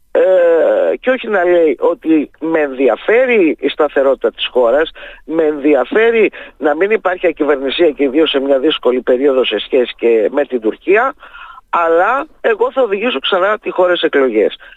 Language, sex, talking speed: Greek, male, 155 wpm